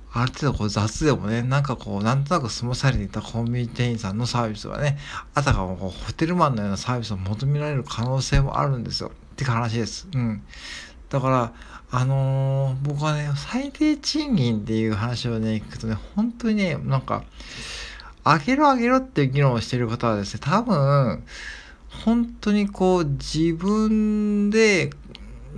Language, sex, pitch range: Japanese, male, 115-160 Hz